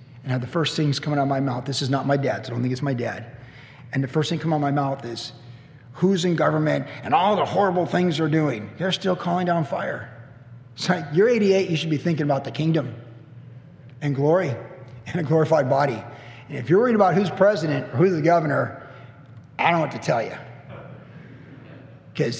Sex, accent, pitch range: male, American, 125-160 Hz